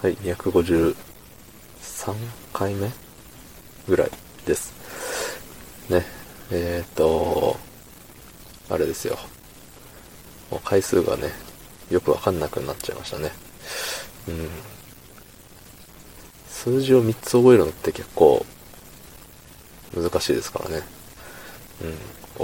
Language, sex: Japanese, male